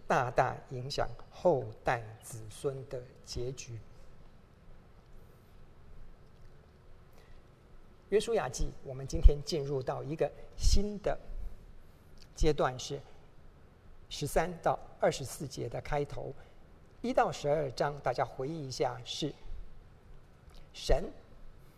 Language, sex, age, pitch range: Chinese, male, 50-69, 120-150 Hz